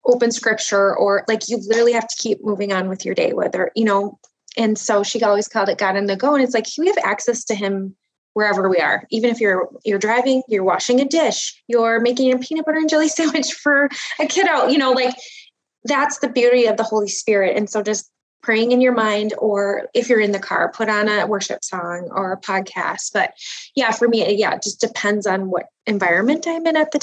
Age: 20-39